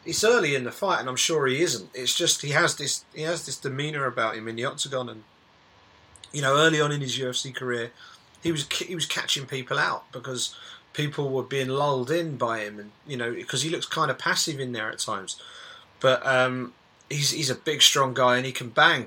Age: 30-49